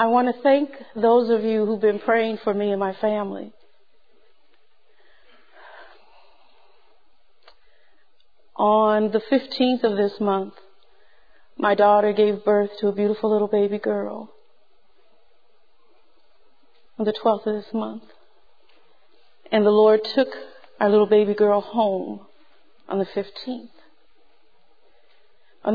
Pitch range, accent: 210-270 Hz, American